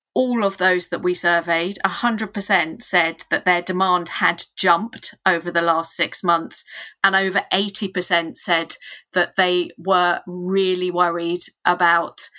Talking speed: 135 wpm